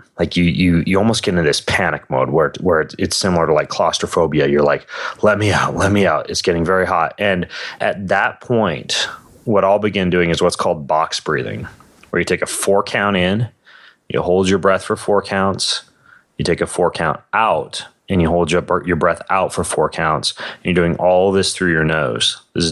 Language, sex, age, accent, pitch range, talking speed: English, male, 30-49, American, 80-95 Hz, 210 wpm